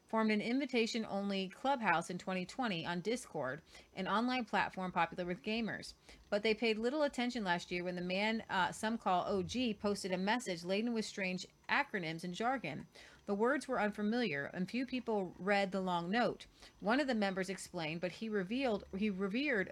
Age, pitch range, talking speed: 30-49, 180-230 Hz, 175 wpm